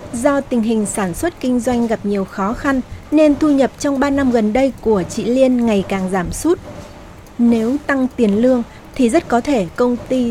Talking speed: 210 wpm